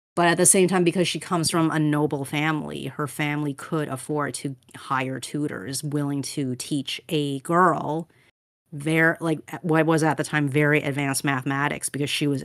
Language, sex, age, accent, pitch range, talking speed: English, female, 30-49, American, 135-160 Hz, 180 wpm